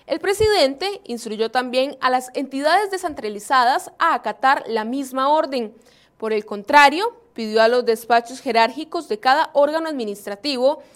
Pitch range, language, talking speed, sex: 235-315 Hz, Spanish, 135 wpm, female